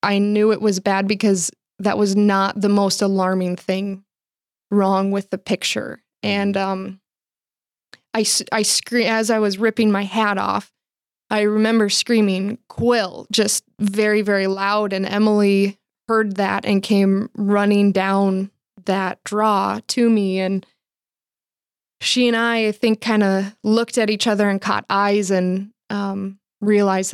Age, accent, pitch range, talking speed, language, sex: 20-39, American, 195-215 Hz, 140 wpm, English, female